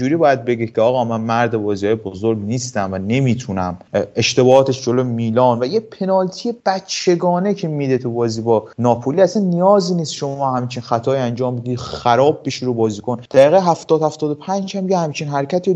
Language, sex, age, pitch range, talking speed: Persian, male, 30-49, 115-150 Hz, 170 wpm